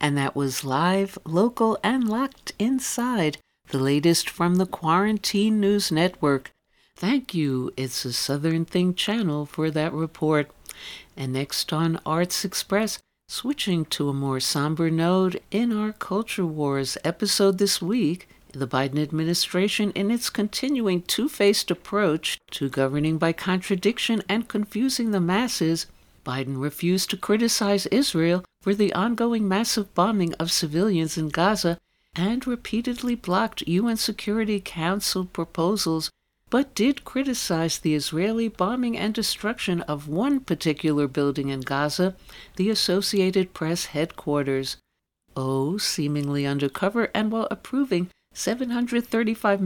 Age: 60-79